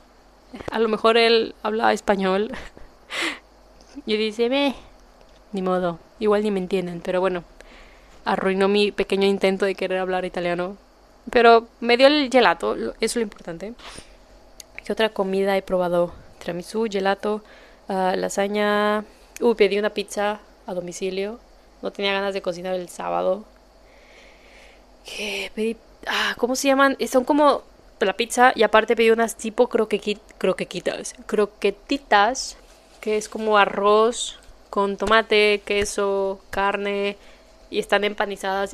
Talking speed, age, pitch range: 130 wpm, 20-39, 195-230 Hz